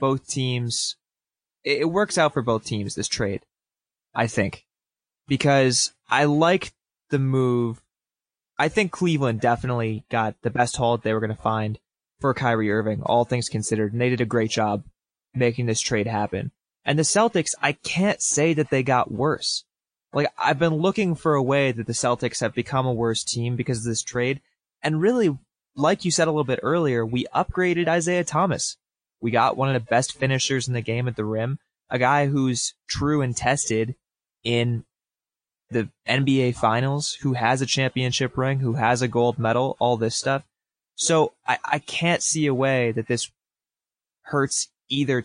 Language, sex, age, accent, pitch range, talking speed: English, male, 20-39, American, 120-145 Hz, 180 wpm